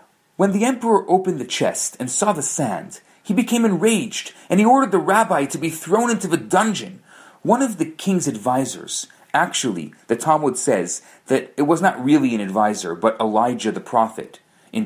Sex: male